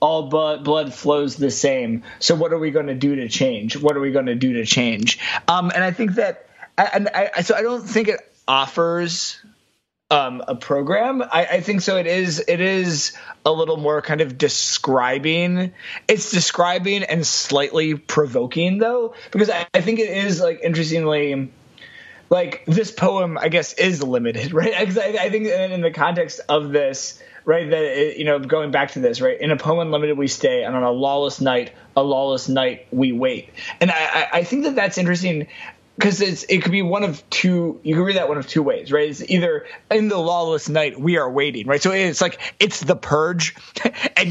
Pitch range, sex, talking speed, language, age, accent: 145-195 Hz, male, 200 wpm, English, 20-39, American